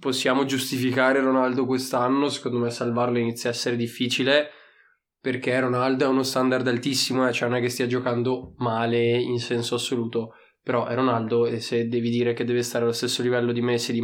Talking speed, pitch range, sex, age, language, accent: 190 wpm, 120-130 Hz, male, 20-39, Italian, native